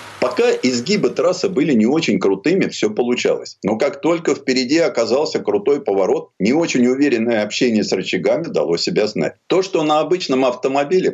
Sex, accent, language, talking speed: male, native, Russian, 160 wpm